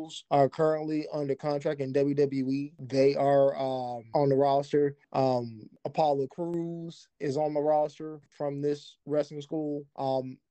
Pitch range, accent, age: 135-150 Hz, American, 20-39